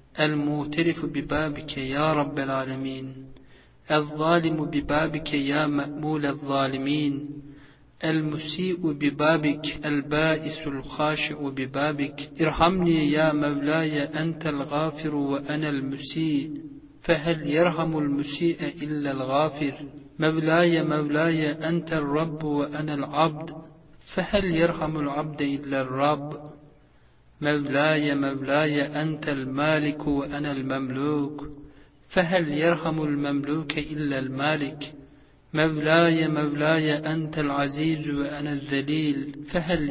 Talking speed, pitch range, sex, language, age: 85 wpm, 145-155 Hz, male, Turkish, 50-69